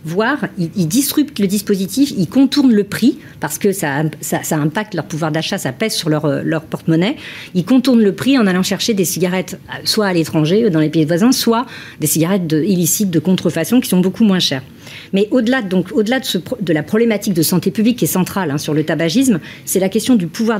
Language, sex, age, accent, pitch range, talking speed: French, female, 50-69, French, 170-225 Hz, 225 wpm